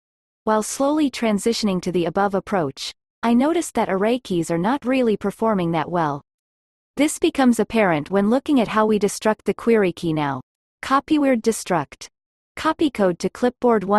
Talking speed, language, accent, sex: 160 wpm, English, American, female